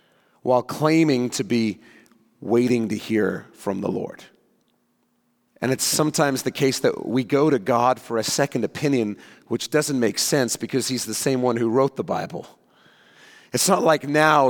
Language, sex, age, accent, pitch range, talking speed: English, male, 40-59, American, 115-145 Hz, 170 wpm